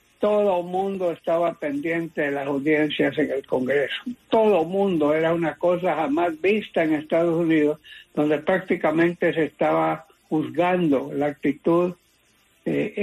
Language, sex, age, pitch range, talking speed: English, male, 60-79, 150-205 Hz, 135 wpm